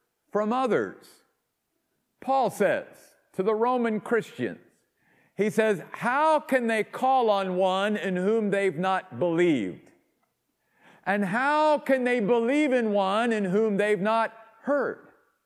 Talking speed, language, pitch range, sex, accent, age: 130 wpm, English, 170-235 Hz, male, American, 50-69